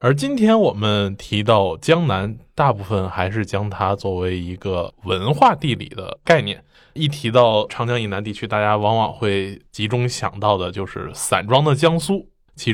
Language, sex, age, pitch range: Chinese, male, 20-39, 100-145 Hz